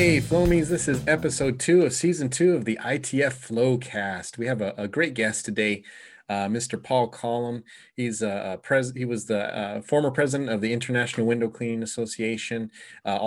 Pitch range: 105-125 Hz